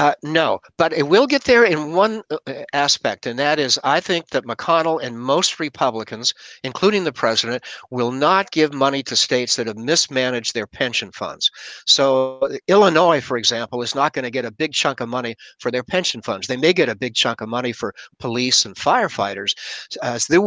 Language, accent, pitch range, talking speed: English, American, 120-165 Hz, 195 wpm